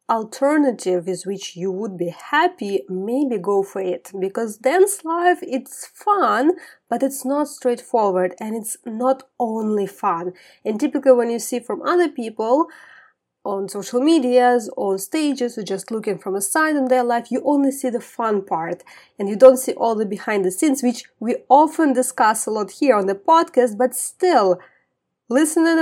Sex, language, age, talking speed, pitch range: female, English, 20-39, 175 wpm, 215-285 Hz